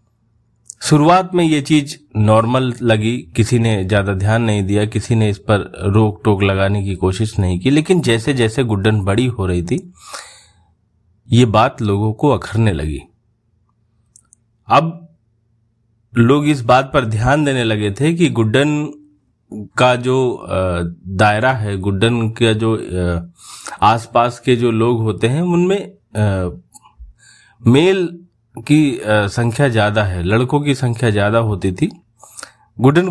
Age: 30-49